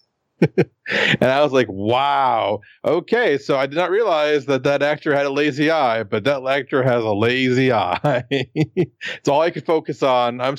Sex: male